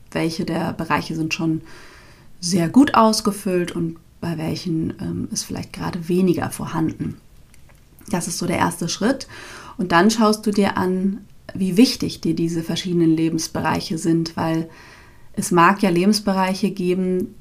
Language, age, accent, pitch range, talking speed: German, 30-49, German, 165-195 Hz, 145 wpm